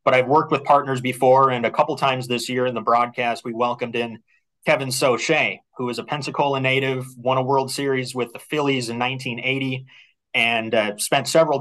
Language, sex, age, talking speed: English, male, 30-49, 195 wpm